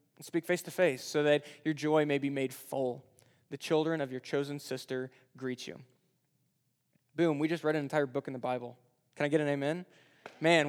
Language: English